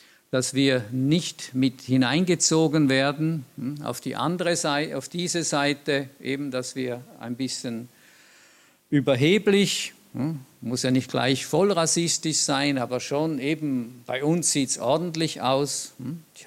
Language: German